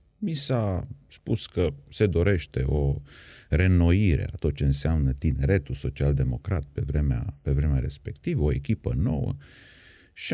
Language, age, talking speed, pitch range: Romanian, 30-49, 135 wpm, 75-115 Hz